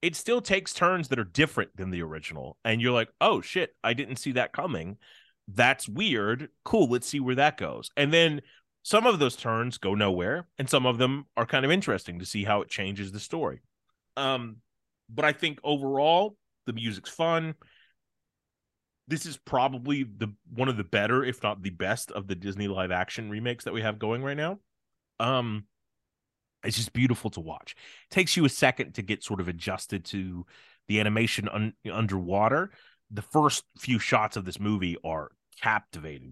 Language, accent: English, American